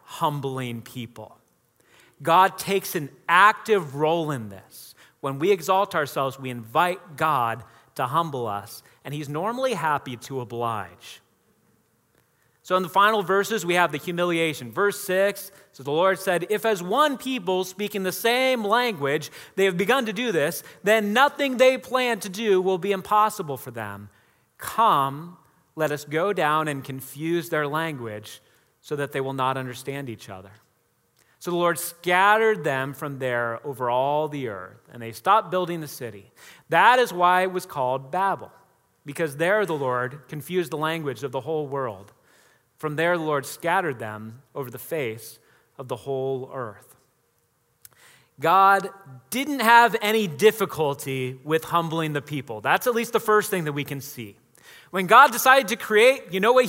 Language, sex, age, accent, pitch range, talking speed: English, male, 30-49, American, 130-195 Hz, 165 wpm